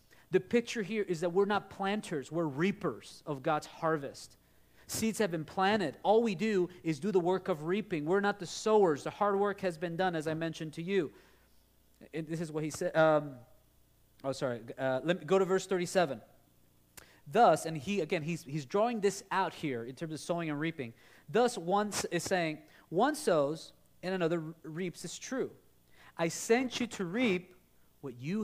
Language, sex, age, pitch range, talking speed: English, male, 40-59, 125-175 Hz, 190 wpm